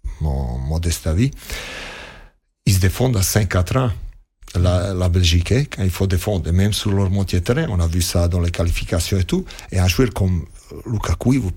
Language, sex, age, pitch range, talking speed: French, male, 50-69, 90-110 Hz, 200 wpm